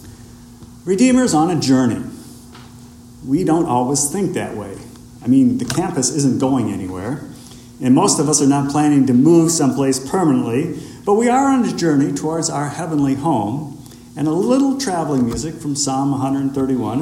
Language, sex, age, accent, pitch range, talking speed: English, male, 50-69, American, 120-165 Hz, 160 wpm